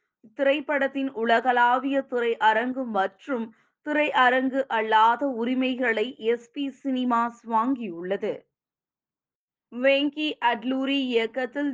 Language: Tamil